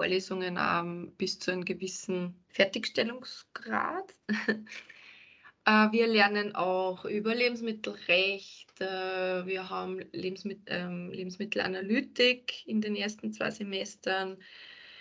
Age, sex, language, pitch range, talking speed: 20-39, female, German, 190-220 Hz, 75 wpm